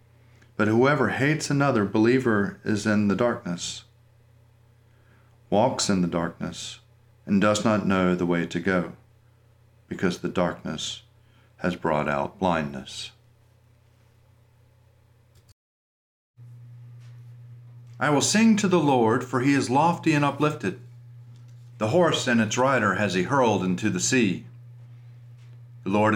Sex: male